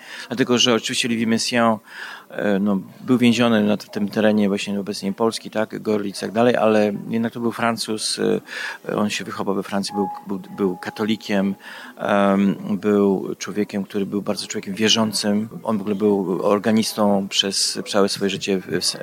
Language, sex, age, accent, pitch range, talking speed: Polish, male, 30-49, native, 100-120 Hz, 160 wpm